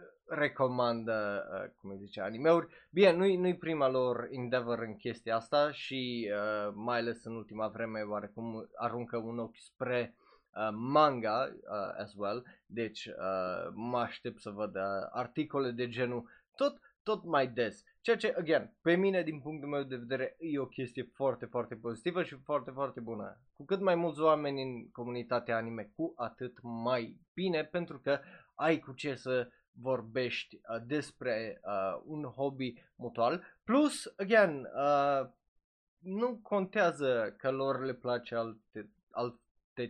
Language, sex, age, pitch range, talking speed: Romanian, male, 20-39, 115-150 Hz, 155 wpm